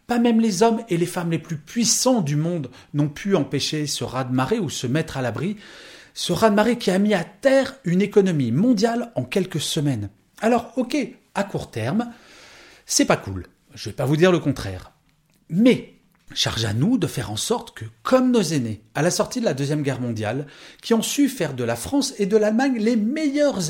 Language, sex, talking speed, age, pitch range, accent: French, male, 210 wpm, 40-59, 120-200 Hz, French